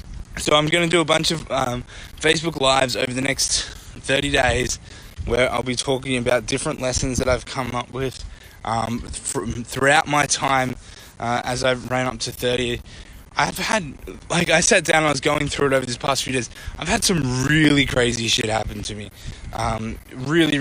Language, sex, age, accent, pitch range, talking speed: English, male, 10-29, Australian, 115-145 Hz, 190 wpm